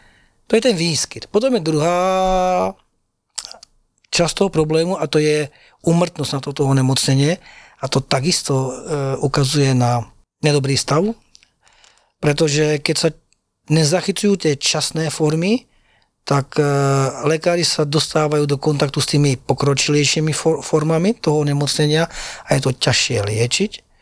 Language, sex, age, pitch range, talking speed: Slovak, male, 40-59, 135-160 Hz, 130 wpm